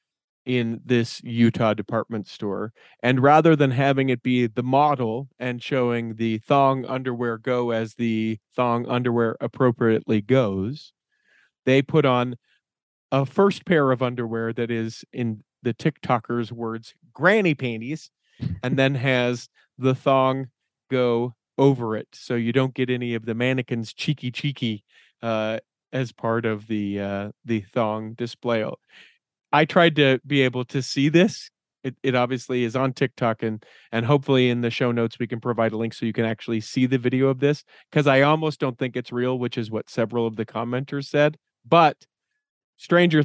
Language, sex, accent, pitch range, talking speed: English, male, American, 115-135 Hz, 165 wpm